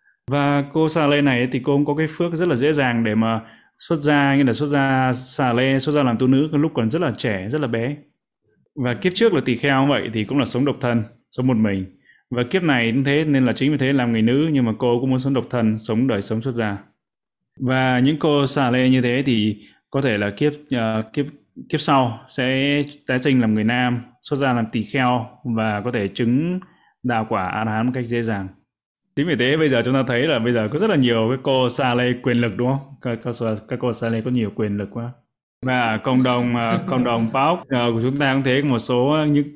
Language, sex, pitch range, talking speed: Vietnamese, male, 115-140 Hz, 255 wpm